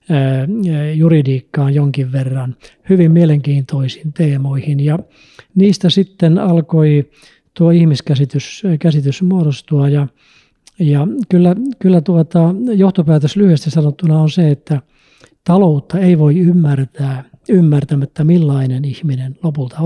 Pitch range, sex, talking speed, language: 140-170 Hz, male, 95 wpm, Finnish